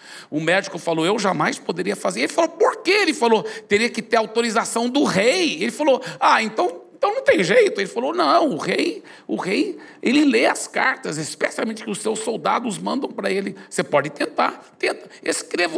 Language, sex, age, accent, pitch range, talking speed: Portuguese, male, 60-79, Brazilian, 140-225 Hz, 190 wpm